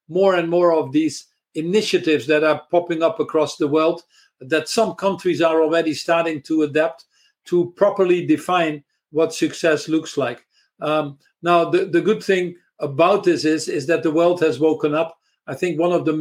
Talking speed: 180 wpm